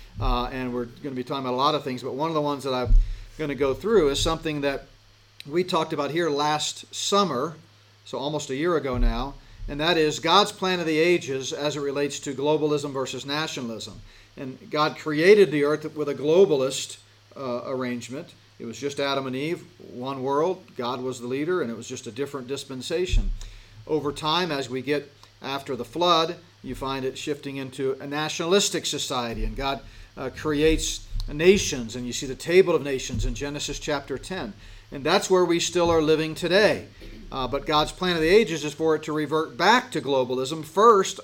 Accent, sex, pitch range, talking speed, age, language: American, male, 125-155 Hz, 200 wpm, 40-59, English